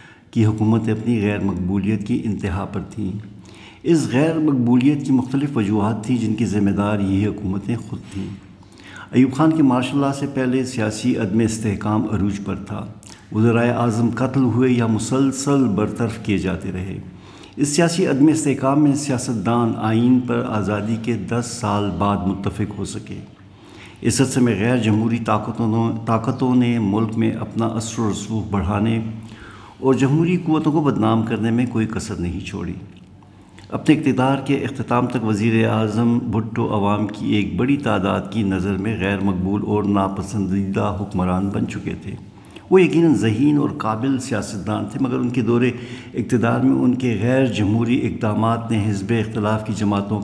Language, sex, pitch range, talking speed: Urdu, male, 100-125 Hz, 165 wpm